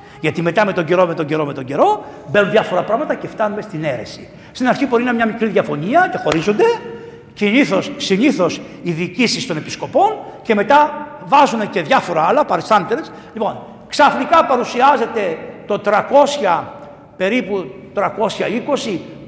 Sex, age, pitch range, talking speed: male, 60-79, 200-285 Hz, 145 wpm